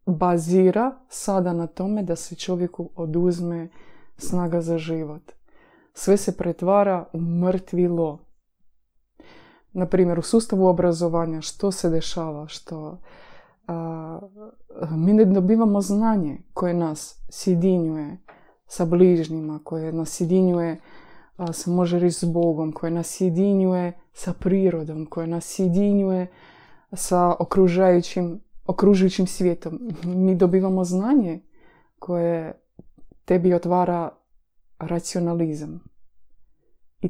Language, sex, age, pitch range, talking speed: Croatian, female, 20-39, 165-190 Hz, 100 wpm